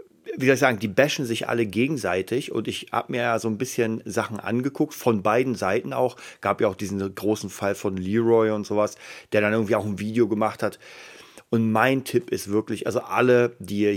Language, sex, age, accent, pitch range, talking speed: German, male, 40-59, German, 110-125 Hz, 215 wpm